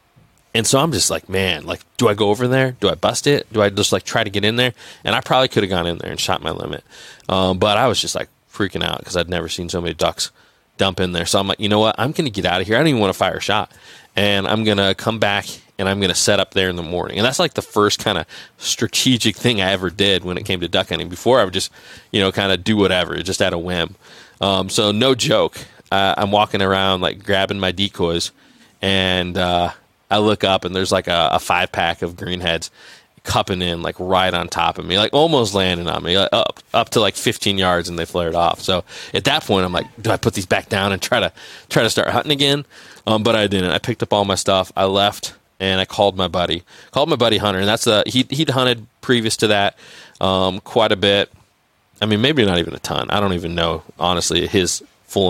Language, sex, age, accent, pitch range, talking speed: English, male, 20-39, American, 90-110 Hz, 260 wpm